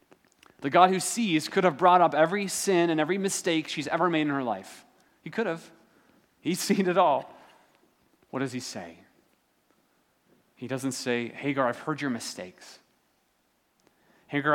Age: 30-49